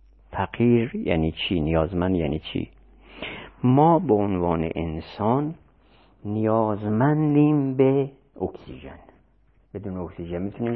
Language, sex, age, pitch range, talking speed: Persian, male, 50-69, 85-125 Hz, 90 wpm